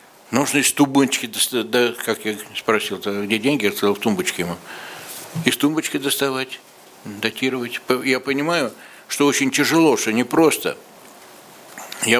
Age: 60-79